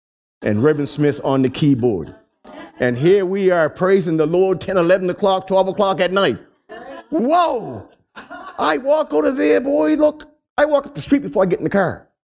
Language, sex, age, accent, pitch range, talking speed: English, male, 50-69, American, 145-225 Hz, 185 wpm